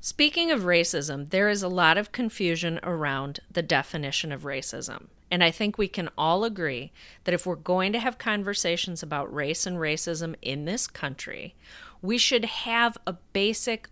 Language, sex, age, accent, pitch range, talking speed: English, female, 40-59, American, 155-200 Hz, 175 wpm